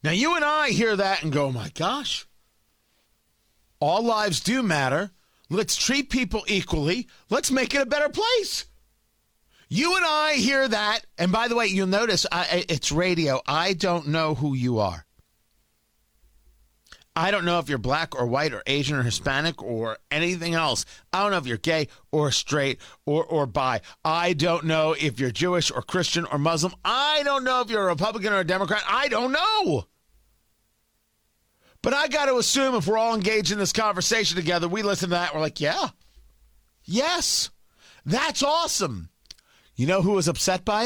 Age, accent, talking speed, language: 50-69, American, 180 wpm, English